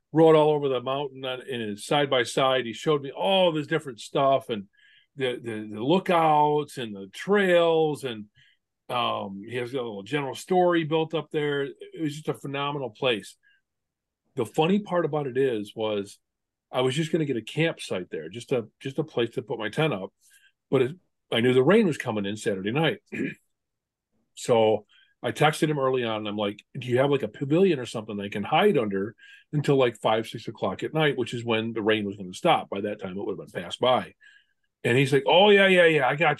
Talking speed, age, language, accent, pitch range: 225 wpm, 40-59, English, American, 115-160 Hz